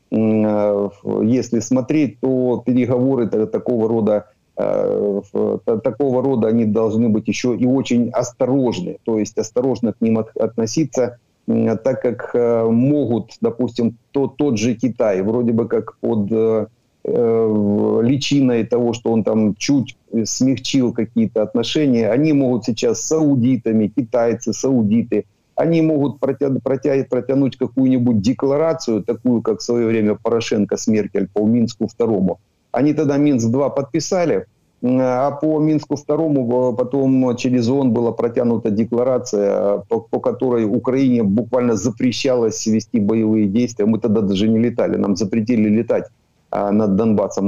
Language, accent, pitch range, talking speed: Ukrainian, native, 110-135 Hz, 125 wpm